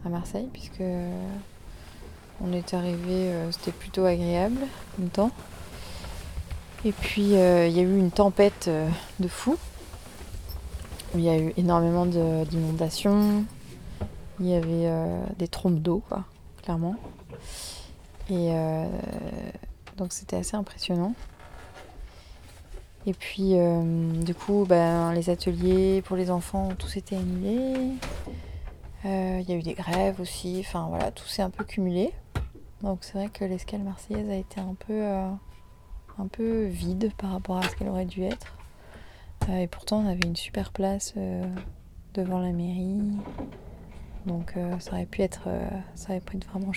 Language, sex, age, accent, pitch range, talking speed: French, female, 20-39, French, 165-195 Hz, 150 wpm